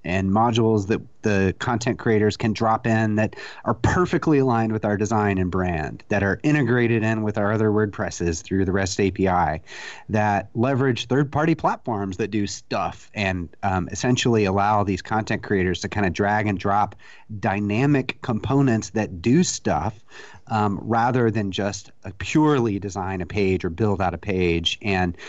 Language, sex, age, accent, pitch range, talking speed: English, male, 30-49, American, 100-120 Hz, 165 wpm